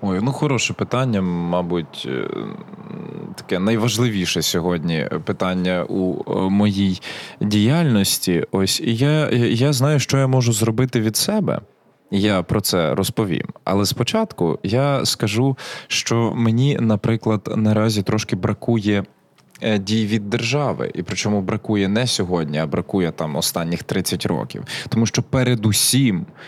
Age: 20-39